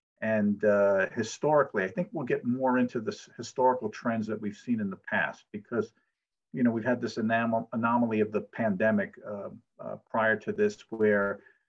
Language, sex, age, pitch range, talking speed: English, male, 50-69, 105-125 Hz, 185 wpm